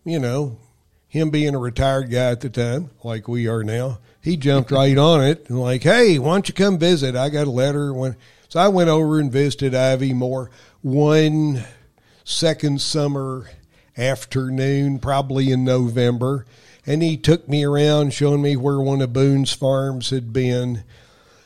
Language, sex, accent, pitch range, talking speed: English, male, American, 120-145 Hz, 170 wpm